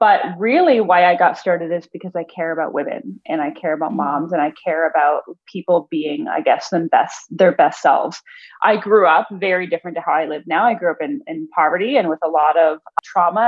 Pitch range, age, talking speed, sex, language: 175-230 Hz, 20-39, 230 wpm, female, English